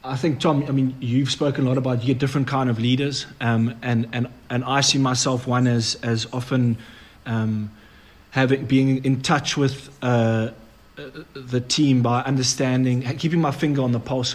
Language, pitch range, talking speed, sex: English, 120-140 Hz, 180 wpm, male